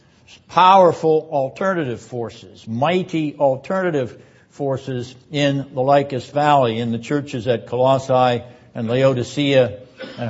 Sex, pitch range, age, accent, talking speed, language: male, 125-160 Hz, 60-79, American, 105 wpm, English